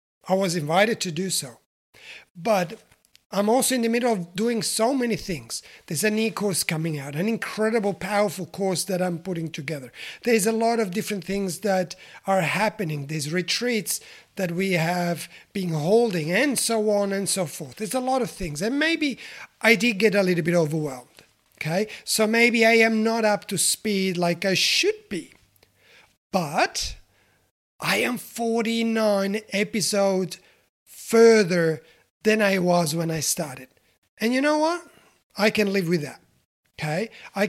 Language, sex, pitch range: English, male, 180-225 Hz